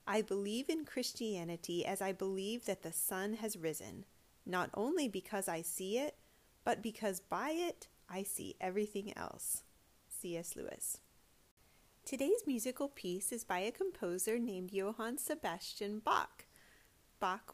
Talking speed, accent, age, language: 135 wpm, American, 30-49, English